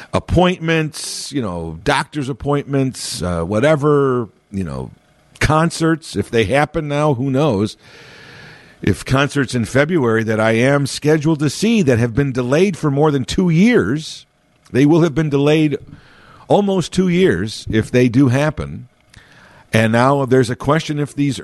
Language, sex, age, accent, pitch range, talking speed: English, male, 50-69, American, 105-150 Hz, 150 wpm